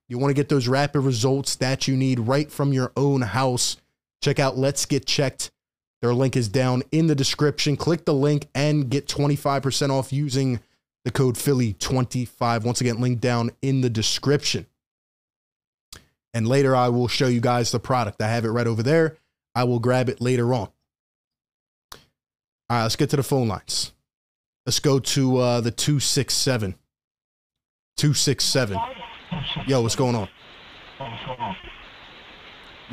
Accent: American